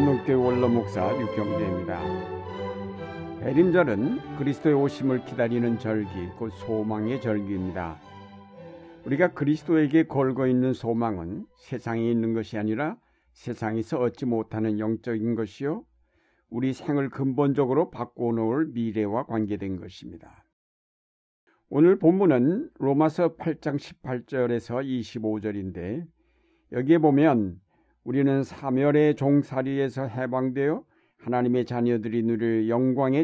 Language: Korean